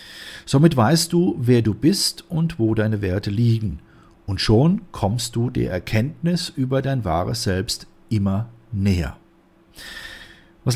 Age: 40-59